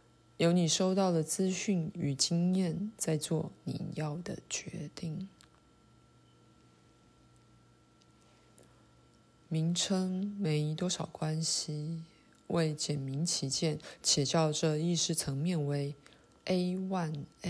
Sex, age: female, 20-39